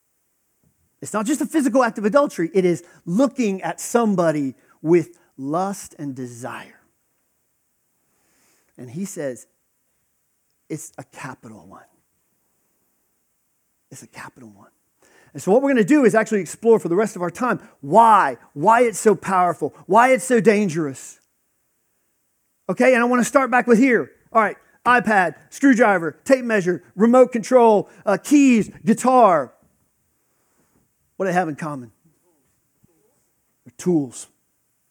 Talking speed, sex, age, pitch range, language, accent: 135 wpm, male, 40-59, 170-240 Hz, English, American